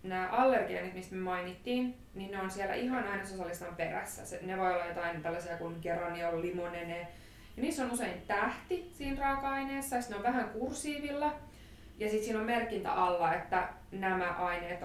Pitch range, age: 175-210 Hz, 20-39